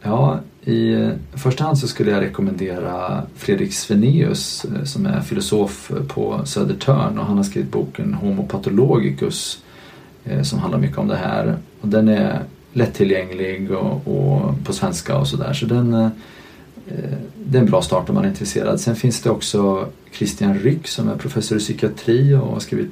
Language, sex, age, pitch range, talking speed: English, male, 30-49, 100-135 Hz, 170 wpm